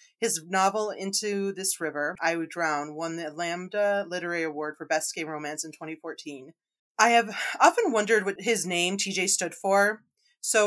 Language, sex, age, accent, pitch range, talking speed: English, female, 30-49, American, 160-215 Hz, 170 wpm